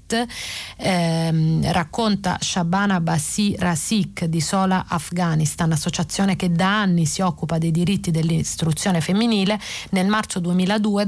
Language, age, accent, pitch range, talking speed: Italian, 30-49, native, 160-190 Hz, 115 wpm